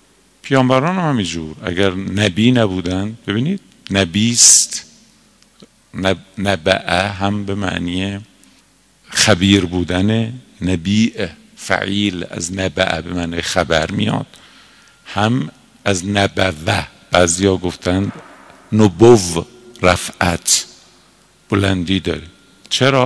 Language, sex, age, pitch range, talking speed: Persian, male, 50-69, 90-115 Hz, 90 wpm